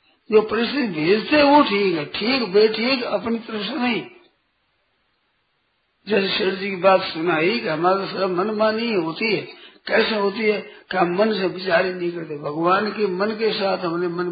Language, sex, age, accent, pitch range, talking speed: Hindi, male, 50-69, native, 175-220 Hz, 170 wpm